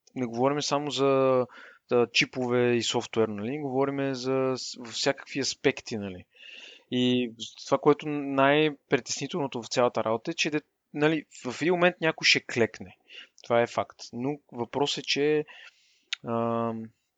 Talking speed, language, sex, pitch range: 135 wpm, Bulgarian, male, 115-140 Hz